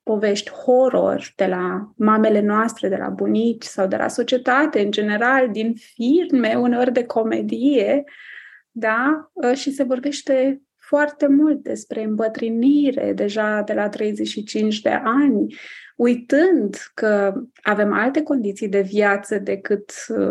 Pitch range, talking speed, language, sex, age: 210-260 Hz, 125 wpm, Romanian, female, 20-39